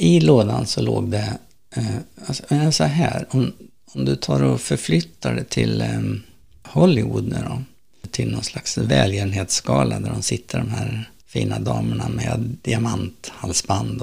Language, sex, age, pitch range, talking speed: Swedish, male, 60-79, 100-130 Hz, 135 wpm